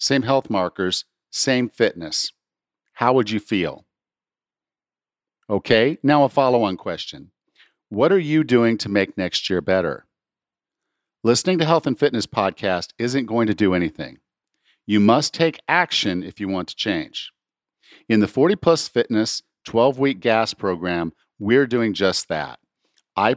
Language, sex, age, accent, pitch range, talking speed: English, male, 50-69, American, 100-140 Hz, 145 wpm